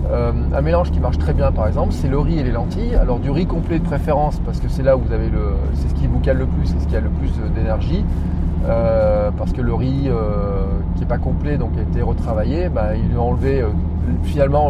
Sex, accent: male, French